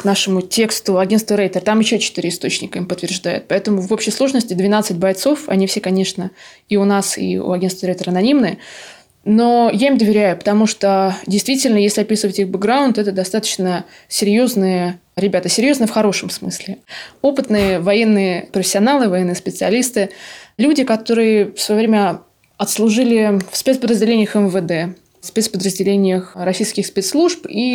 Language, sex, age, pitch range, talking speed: Russian, female, 20-39, 185-220 Hz, 140 wpm